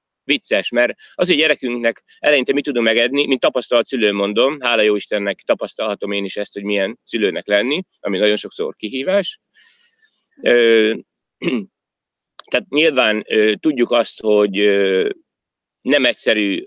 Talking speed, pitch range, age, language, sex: 140 wpm, 110-165 Hz, 30-49, Hungarian, male